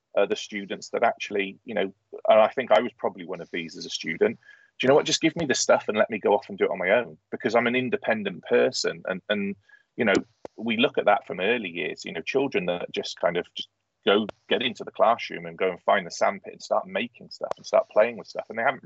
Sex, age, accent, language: male, 30-49, British, English